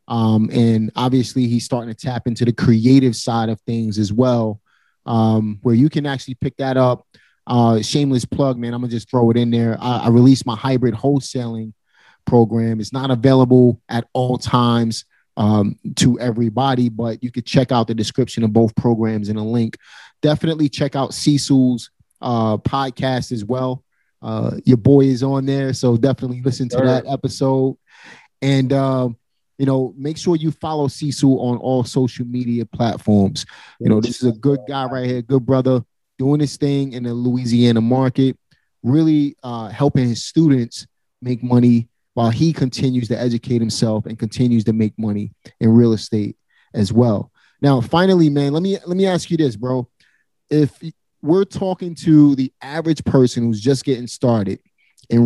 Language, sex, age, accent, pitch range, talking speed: English, male, 30-49, American, 115-135 Hz, 175 wpm